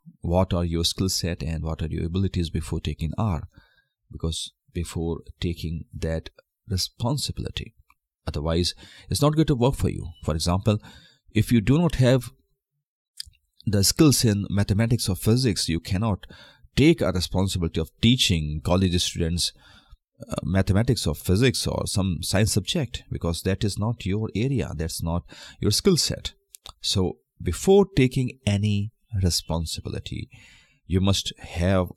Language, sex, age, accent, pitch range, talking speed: Hindi, male, 30-49, native, 80-110 Hz, 140 wpm